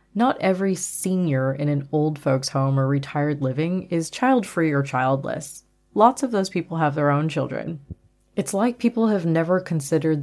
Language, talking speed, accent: English, 170 wpm, American